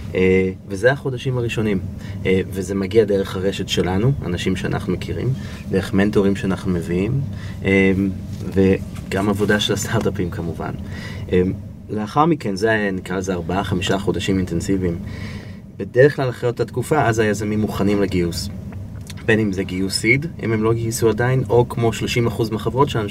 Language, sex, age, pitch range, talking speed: Hebrew, male, 30-49, 95-110 Hz, 145 wpm